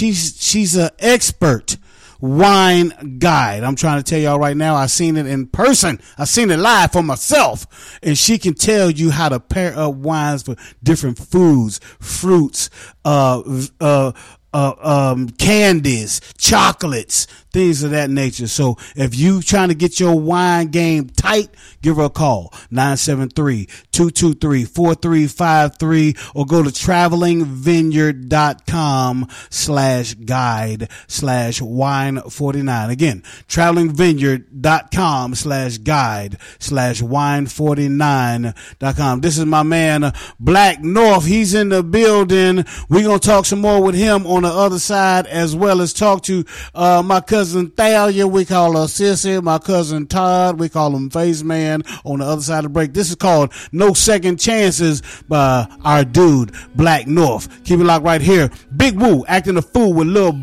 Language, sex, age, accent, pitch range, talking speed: English, male, 30-49, American, 135-180 Hz, 150 wpm